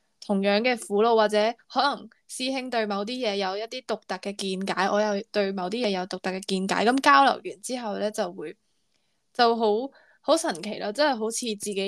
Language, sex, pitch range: Chinese, female, 200-230 Hz